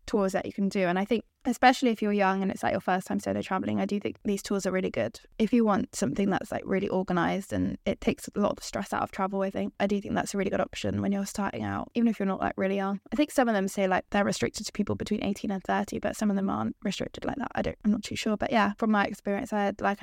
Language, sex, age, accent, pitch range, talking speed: English, female, 10-29, British, 195-225 Hz, 315 wpm